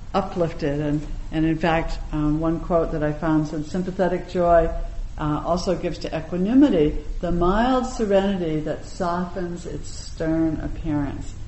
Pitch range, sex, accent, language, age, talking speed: 145-180 Hz, female, American, English, 60-79, 135 wpm